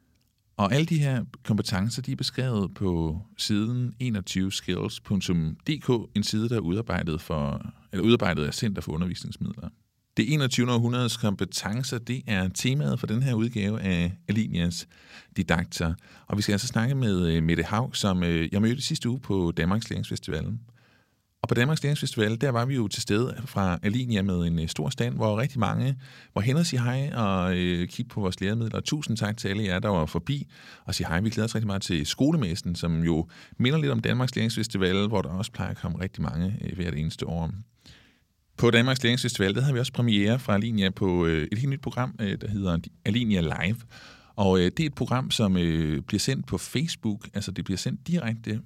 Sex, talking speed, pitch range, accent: male, 195 wpm, 90-125 Hz, native